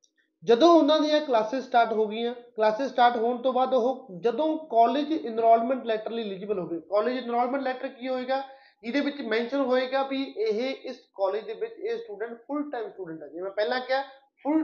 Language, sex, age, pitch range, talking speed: Punjabi, male, 20-39, 215-265 Hz, 190 wpm